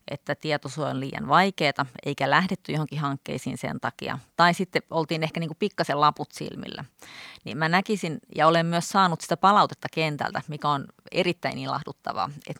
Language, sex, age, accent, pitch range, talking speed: Finnish, female, 30-49, native, 145-180 Hz, 160 wpm